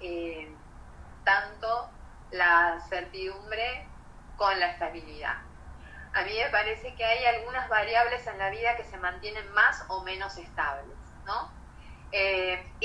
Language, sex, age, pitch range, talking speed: Spanish, female, 20-39, 180-245 Hz, 125 wpm